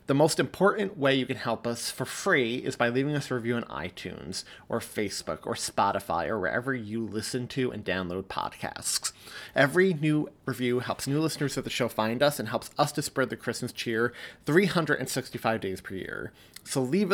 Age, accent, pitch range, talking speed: 30-49, American, 120-150 Hz, 195 wpm